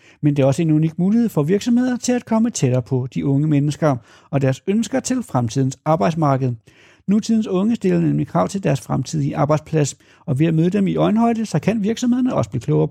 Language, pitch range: Danish, 140-210 Hz